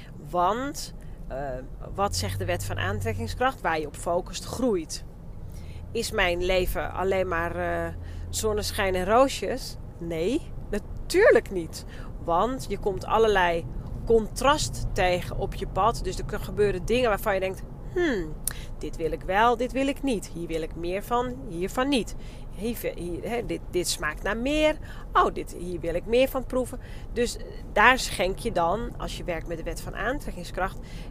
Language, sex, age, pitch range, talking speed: Dutch, female, 30-49, 165-235 Hz, 165 wpm